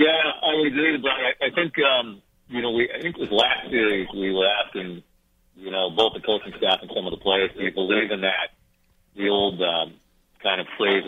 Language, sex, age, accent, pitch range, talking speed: English, male, 50-69, American, 90-125 Hz, 210 wpm